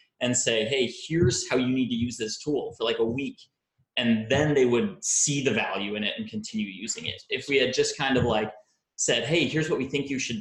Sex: male